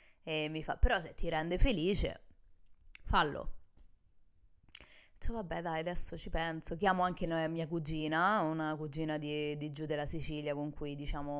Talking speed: 160 wpm